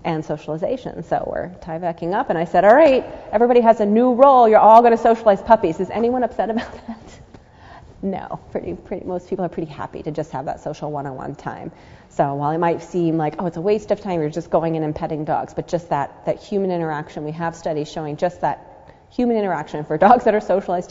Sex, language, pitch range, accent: female, English, 165-210 Hz, American